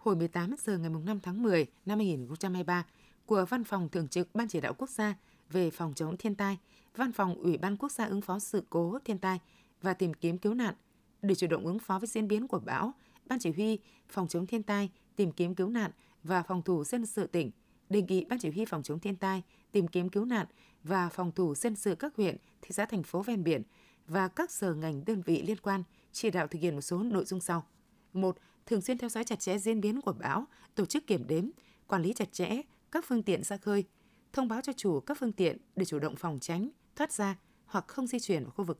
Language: Vietnamese